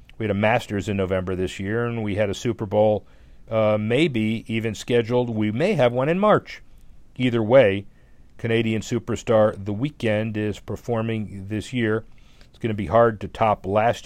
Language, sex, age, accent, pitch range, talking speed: English, male, 50-69, American, 105-125 Hz, 180 wpm